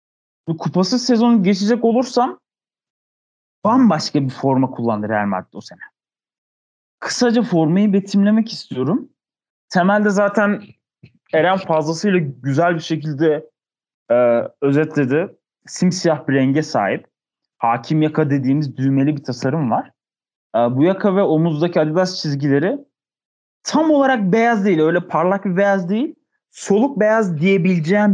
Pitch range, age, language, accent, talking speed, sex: 150-225 Hz, 30-49, Turkish, native, 120 wpm, male